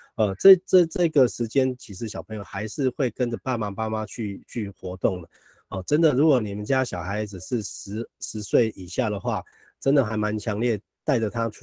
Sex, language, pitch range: male, Chinese, 100-125 Hz